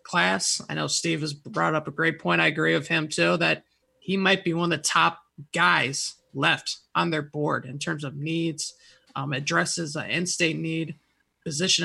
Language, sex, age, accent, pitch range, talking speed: English, male, 20-39, American, 150-170 Hz, 200 wpm